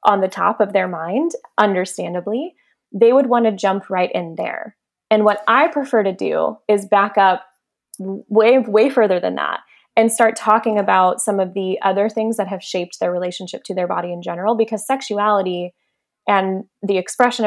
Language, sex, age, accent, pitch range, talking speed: English, female, 20-39, American, 180-220 Hz, 180 wpm